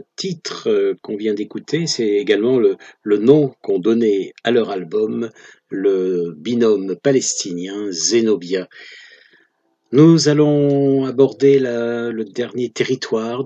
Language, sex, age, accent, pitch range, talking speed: French, male, 50-69, French, 110-150 Hz, 110 wpm